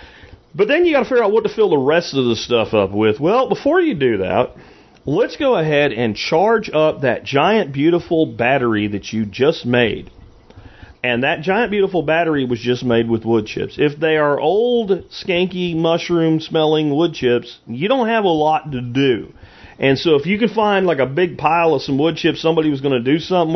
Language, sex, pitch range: English, male, 125-175 Hz